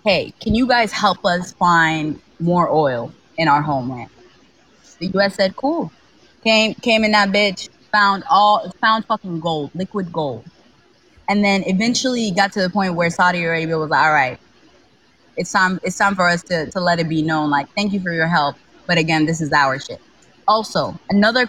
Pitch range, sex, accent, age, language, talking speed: 165-210 Hz, female, American, 20-39, English, 190 wpm